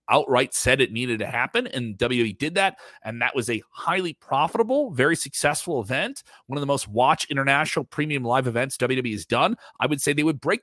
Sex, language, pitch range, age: male, English, 120-165 Hz, 30-49